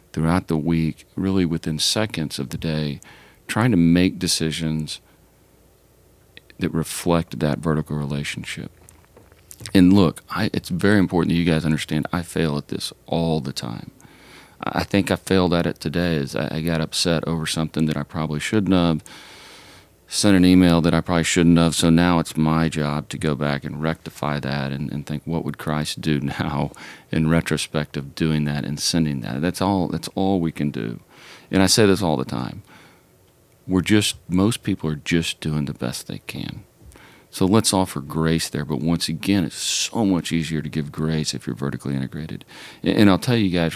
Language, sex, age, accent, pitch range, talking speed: English, male, 40-59, American, 75-90 Hz, 190 wpm